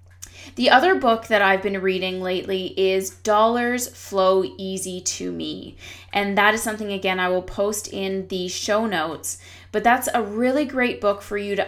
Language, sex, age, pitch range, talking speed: English, female, 20-39, 180-220 Hz, 180 wpm